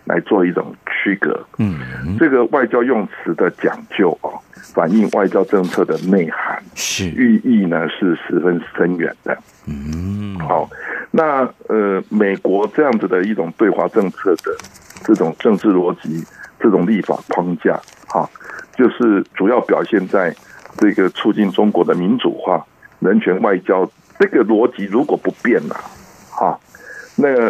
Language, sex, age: Chinese, male, 60-79